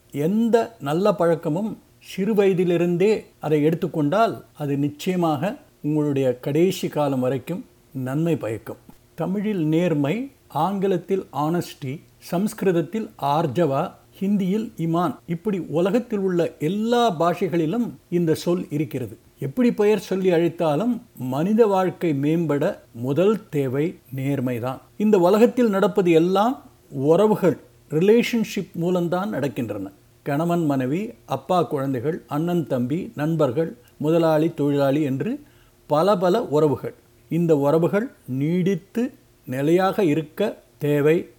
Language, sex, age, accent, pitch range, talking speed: Tamil, male, 50-69, native, 140-190 Hz, 95 wpm